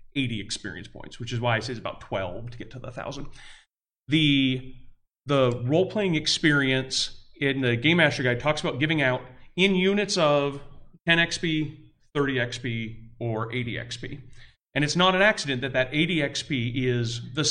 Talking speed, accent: 170 wpm, American